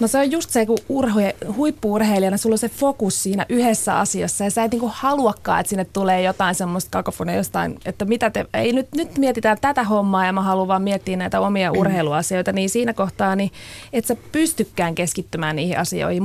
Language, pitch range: Finnish, 190-230 Hz